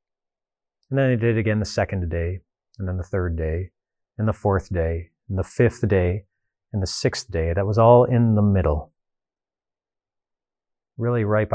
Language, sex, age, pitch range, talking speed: English, male, 30-49, 85-115 Hz, 175 wpm